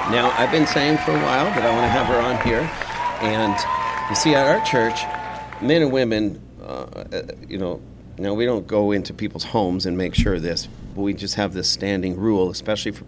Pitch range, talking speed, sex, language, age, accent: 95-125 Hz, 220 wpm, male, English, 50-69, American